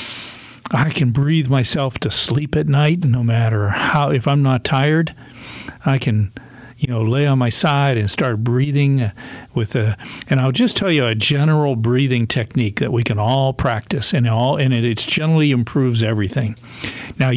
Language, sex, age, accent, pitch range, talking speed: English, male, 50-69, American, 120-145 Hz, 175 wpm